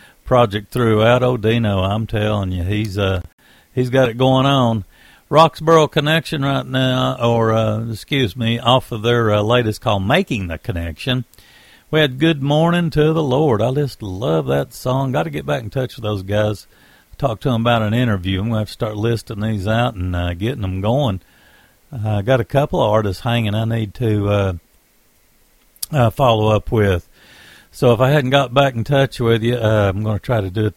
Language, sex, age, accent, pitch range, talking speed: English, male, 60-79, American, 105-135 Hz, 205 wpm